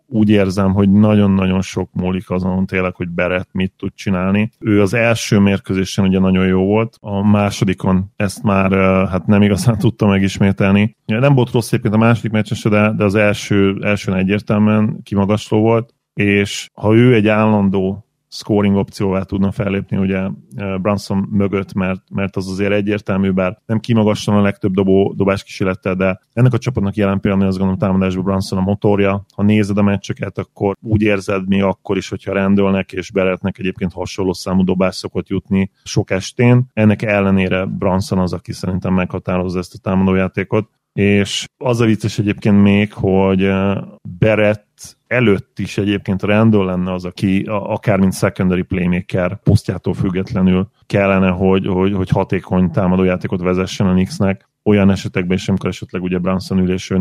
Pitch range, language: 95-105 Hz, Hungarian